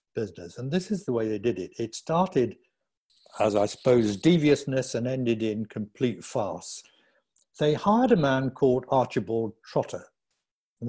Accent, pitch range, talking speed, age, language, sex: British, 105-145 Hz, 155 wpm, 60-79, English, male